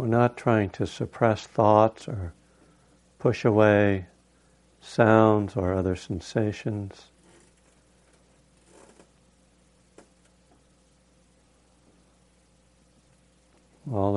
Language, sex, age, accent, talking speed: English, male, 60-79, American, 60 wpm